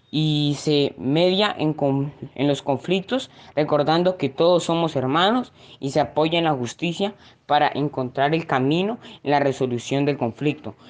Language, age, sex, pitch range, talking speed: Spanish, 20-39, female, 130-165 Hz, 150 wpm